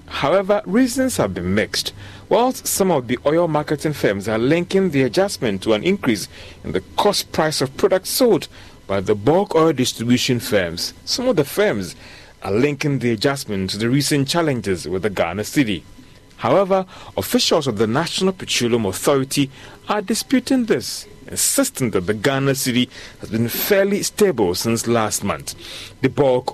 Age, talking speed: 40-59, 165 wpm